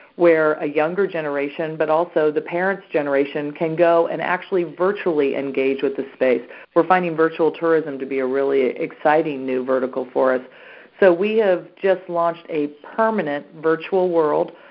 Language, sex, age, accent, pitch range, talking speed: English, female, 40-59, American, 135-165 Hz, 165 wpm